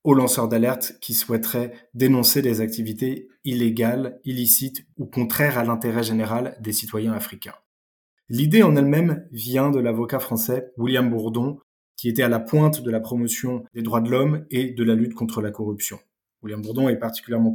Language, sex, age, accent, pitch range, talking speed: French, male, 20-39, French, 115-135 Hz, 170 wpm